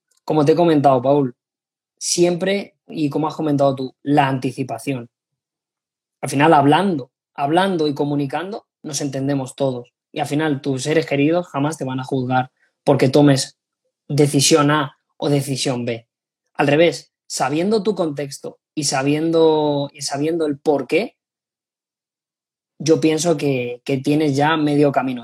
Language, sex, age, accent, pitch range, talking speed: Spanish, female, 20-39, Spanish, 140-160 Hz, 140 wpm